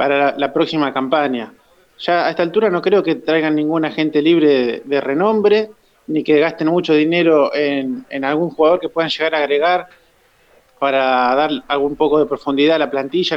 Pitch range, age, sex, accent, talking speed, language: 145-185 Hz, 20-39, male, Argentinian, 190 wpm, Spanish